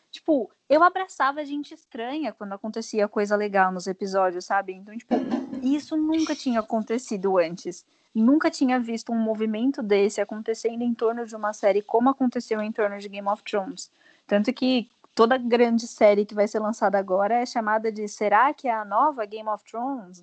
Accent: Brazilian